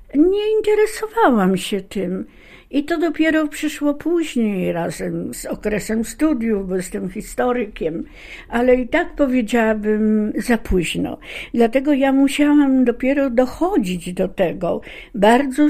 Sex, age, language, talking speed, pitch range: female, 60-79, Polish, 115 wpm, 195-275 Hz